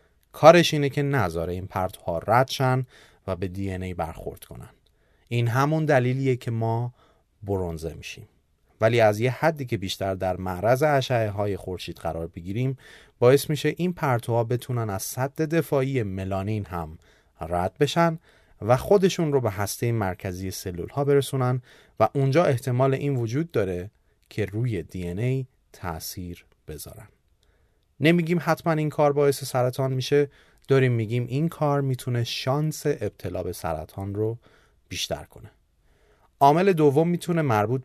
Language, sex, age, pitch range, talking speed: Persian, male, 30-49, 100-140 Hz, 145 wpm